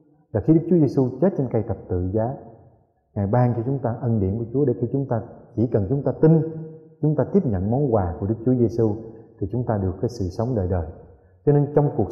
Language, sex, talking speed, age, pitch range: Vietnamese, male, 255 wpm, 20-39, 105-130 Hz